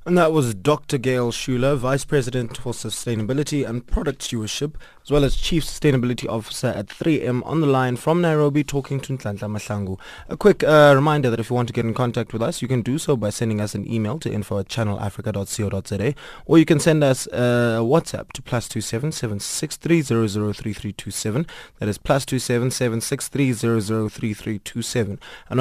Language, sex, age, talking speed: English, male, 20-39, 165 wpm